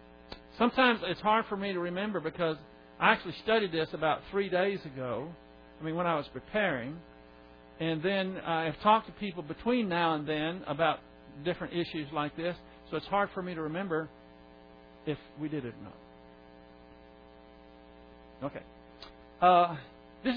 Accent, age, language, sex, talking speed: American, 60-79, English, male, 160 wpm